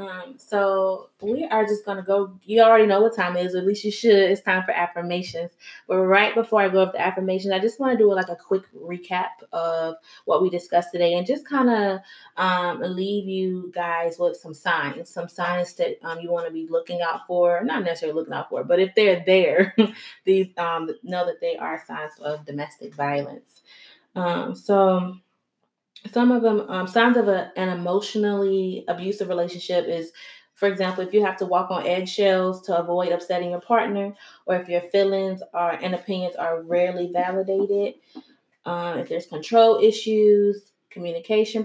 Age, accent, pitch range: 20-39, American, 175-200 Hz